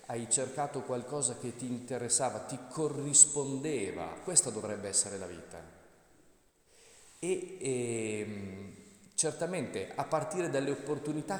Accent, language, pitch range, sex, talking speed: native, Italian, 115-155 Hz, male, 105 wpm